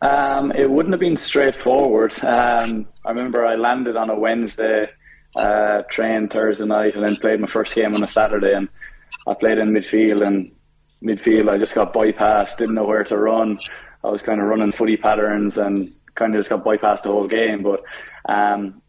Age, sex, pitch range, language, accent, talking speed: 20-39, male, 105-115 Hz, English, Irish, 195 wpm